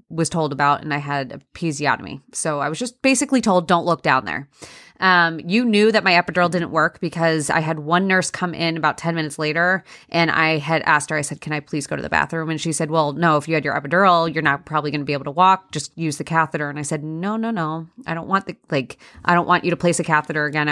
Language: English